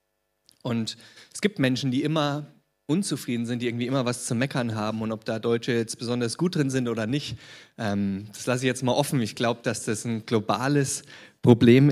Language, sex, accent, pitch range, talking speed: German, male, German, 110-130 Hz, 200 wpm